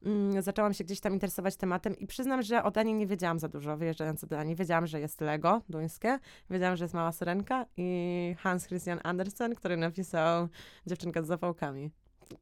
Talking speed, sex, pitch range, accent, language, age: 180 wpm, female, 180-200 Hz, native, Polish, 20-39